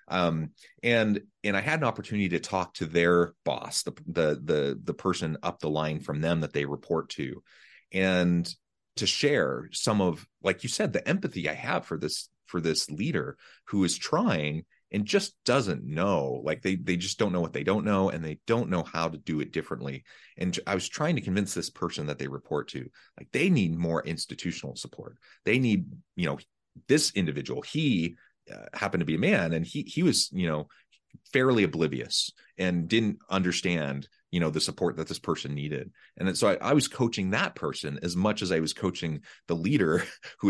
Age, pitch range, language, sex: 30-49, 80-105 Hz, English, male